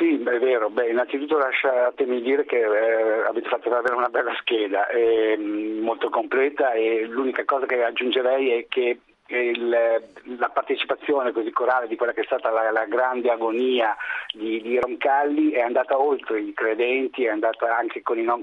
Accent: native